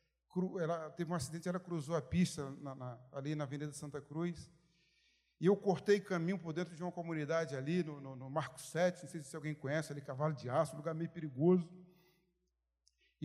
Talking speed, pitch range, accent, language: 195 wpm, 165-220 Hz, Brazilian, Portuguese